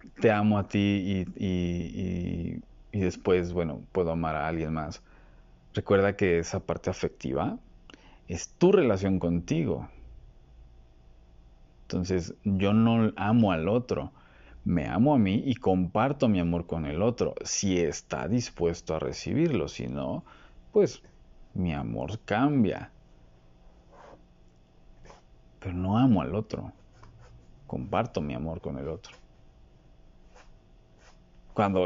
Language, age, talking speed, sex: Spanish, 50-69, 115 wpm, male